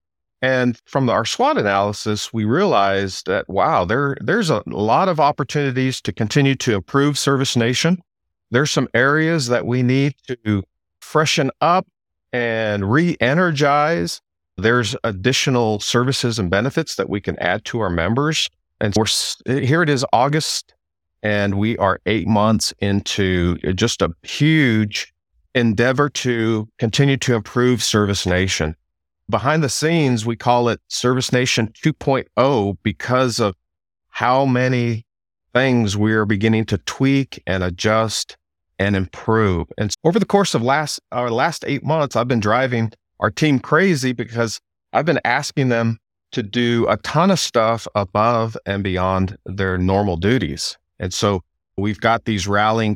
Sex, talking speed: male, 145 wpm